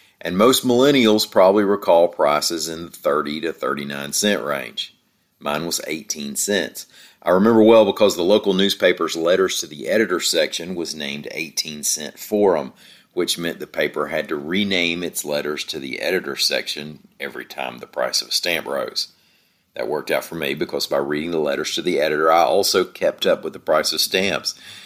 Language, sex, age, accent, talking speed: English, male, 40-59, American, 180 wpm